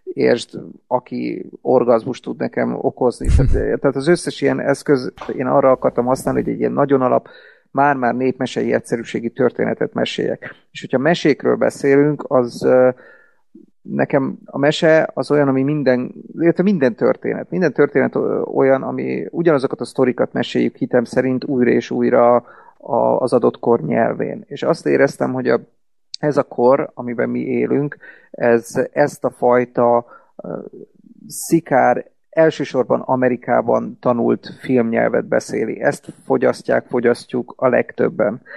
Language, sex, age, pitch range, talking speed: Hungarian, male, 30-49, 120-145 Hz, 130 wpm